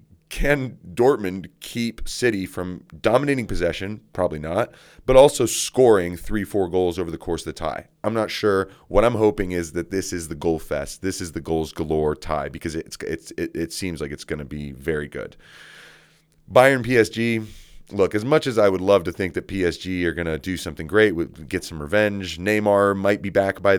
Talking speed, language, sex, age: 200 wpm, English, male, 30-49